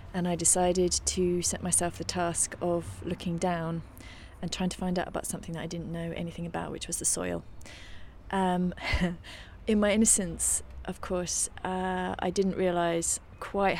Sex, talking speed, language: female, 170 wpm, English